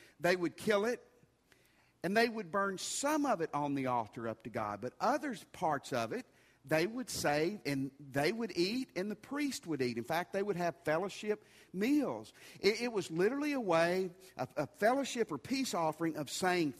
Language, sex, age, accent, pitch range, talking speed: English, male, 50-69, American, 140-195 Hz, 195 wpm